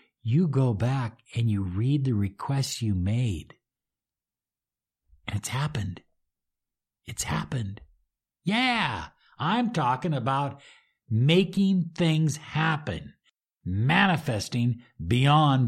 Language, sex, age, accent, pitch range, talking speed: English, male, 60-79, American, 115-160 Hz, 90 wpm